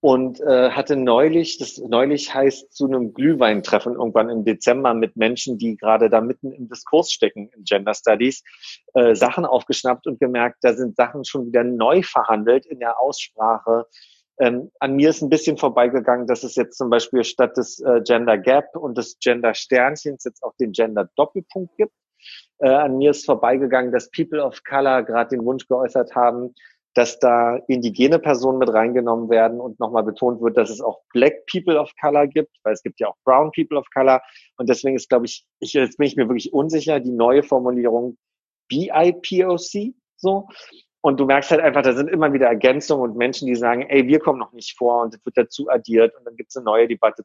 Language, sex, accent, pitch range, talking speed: German, male, German, 115-145 Hz, 200 wpm